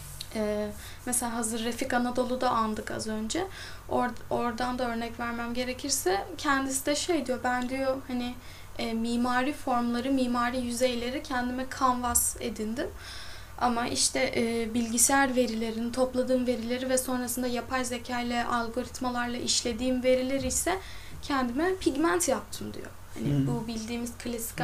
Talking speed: 130 wpm